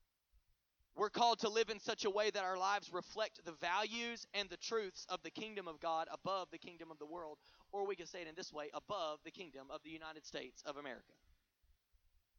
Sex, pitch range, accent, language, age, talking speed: male, 160-245 Hz, American, English, 30-49, 220 wpm